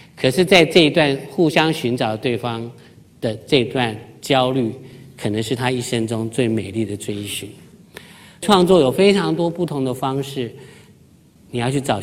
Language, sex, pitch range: Chinese, male, 110-135 Hz